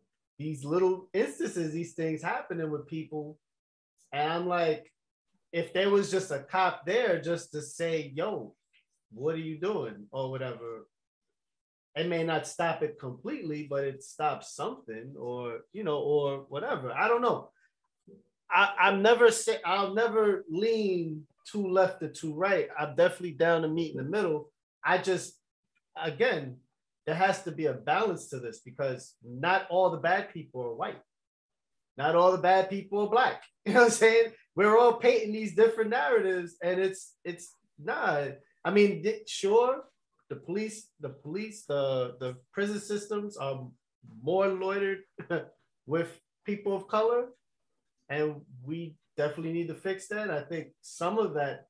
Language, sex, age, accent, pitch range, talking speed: English, male, 30-49, American, 150-205 Hz, 160 wpm